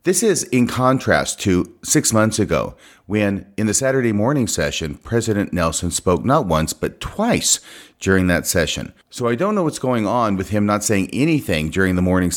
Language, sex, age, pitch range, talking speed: English, male, 40-59, 90-115 Hz, 190 wpm